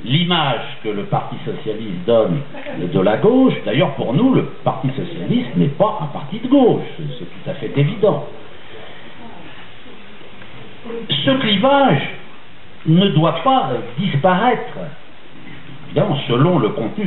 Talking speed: 125 wpm